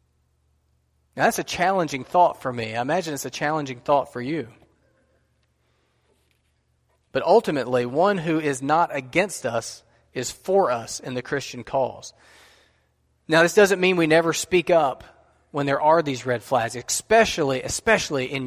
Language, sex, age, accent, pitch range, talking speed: English, male, 30-49, American, 125-165 Hz, 155 wpm